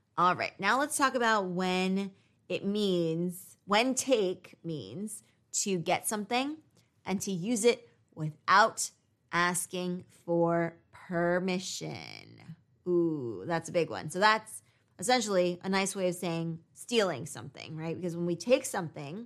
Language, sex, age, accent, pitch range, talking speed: English, female, 20-39, American, 165-215 Hz, 135 wpm